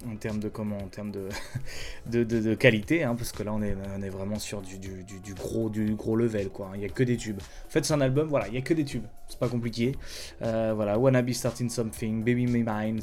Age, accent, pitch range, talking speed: 20-39, French, 110-150 Hz, 270 wpm